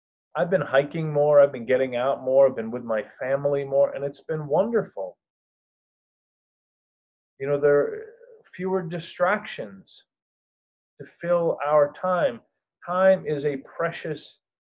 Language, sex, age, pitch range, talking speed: English, male, 30-49, 125-175 Hz, 135 wpm